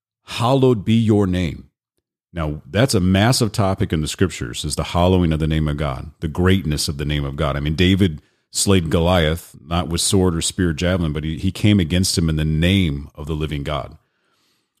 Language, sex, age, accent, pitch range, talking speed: English, male, 40-59, American, 80-100 Hz, 205 wpm